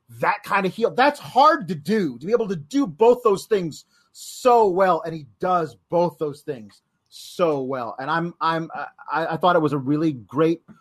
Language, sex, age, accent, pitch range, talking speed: English, male, 30-49, American, 160-210 Hz, 205 wpm